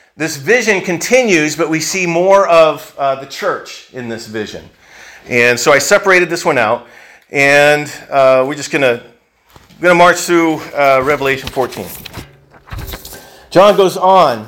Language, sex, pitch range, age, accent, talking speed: English, male, 135-180 Hz, 40-59, American, 145 wpm